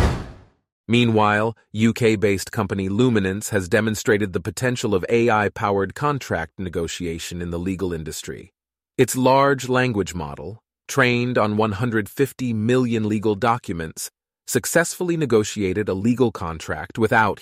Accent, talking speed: American, 110 wpm